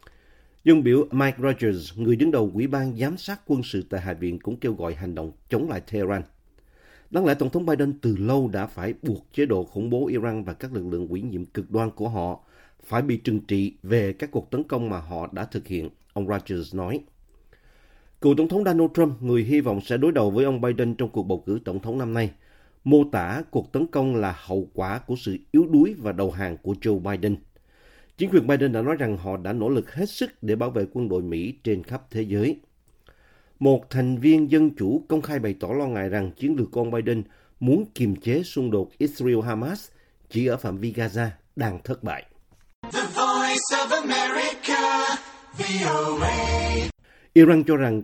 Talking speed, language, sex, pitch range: 205 wpm, Vietnamese, male, 100-135 Hz